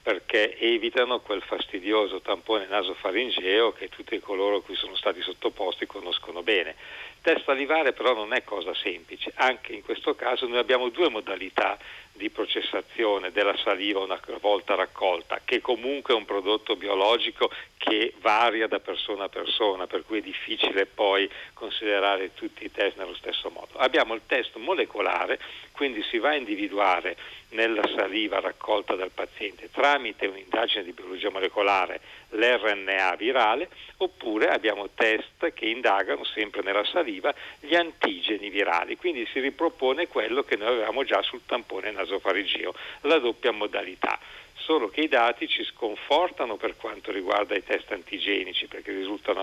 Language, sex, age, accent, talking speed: Italian, male, 50-69, native, 150 wpm